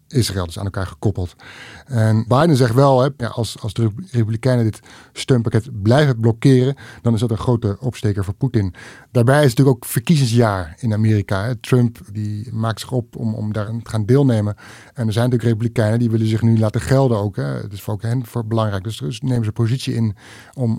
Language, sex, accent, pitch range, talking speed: Dutch, male, Dutch, 110-125 Hz, 195 wpm